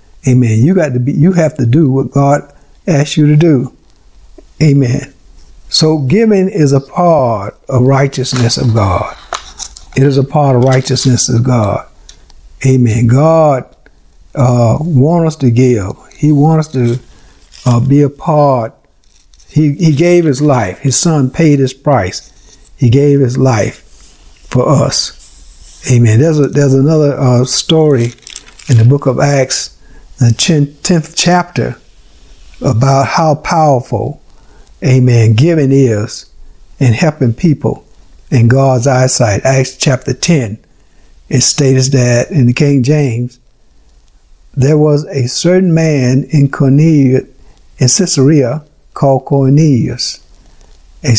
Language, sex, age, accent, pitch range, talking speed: English, male, 60-79, American, 120-150 Hz, 135 wpm